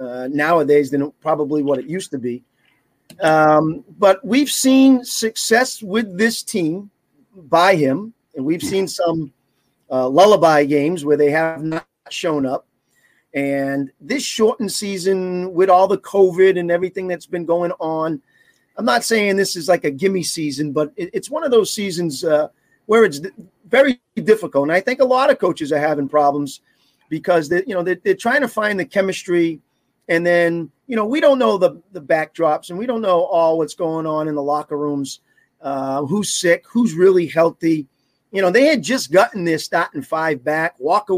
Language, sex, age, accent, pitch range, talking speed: English, male, 40-59, American, 150-200 Hz, 180 wpm